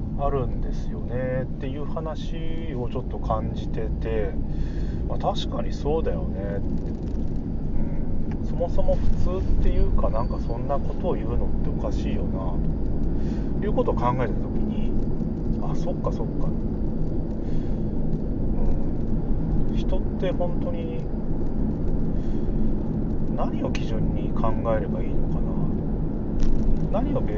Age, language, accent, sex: 30-49, Japanese, native, male